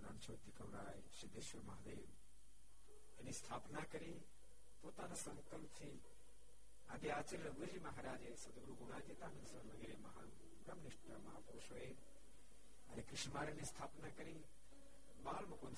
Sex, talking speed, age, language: male, 55 wpm, 60-79, Gujarati